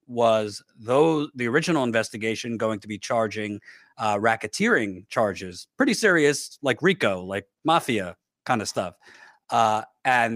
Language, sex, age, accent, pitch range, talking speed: English, male, 40-59, American, 110-135 Hz, 120 wpm